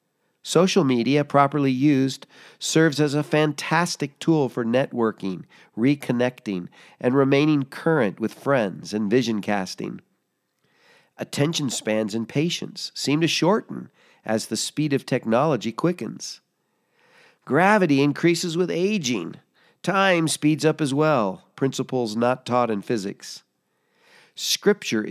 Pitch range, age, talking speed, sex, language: 110-145 Hz, 50-69, 115 wpm, male, English